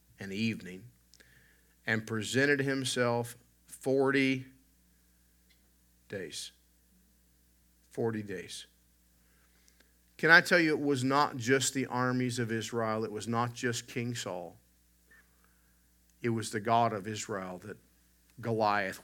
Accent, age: American, 50-69